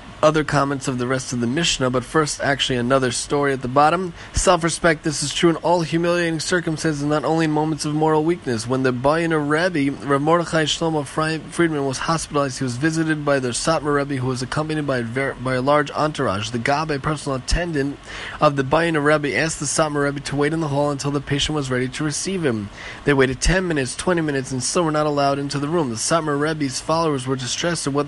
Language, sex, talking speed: English, male, 225 wpm